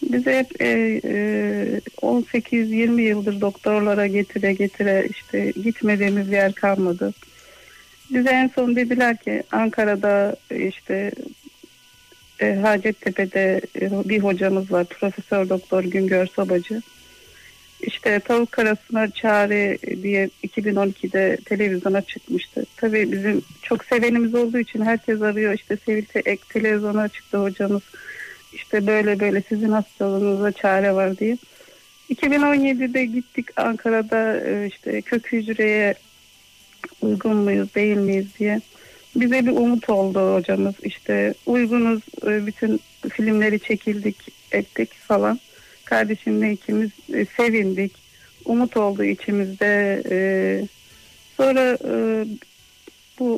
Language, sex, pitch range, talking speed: Turkish, female, 195-230 Hz, 100 wpm